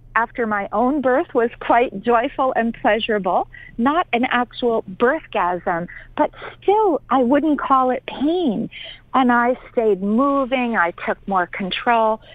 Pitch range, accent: 195-275 Hz, American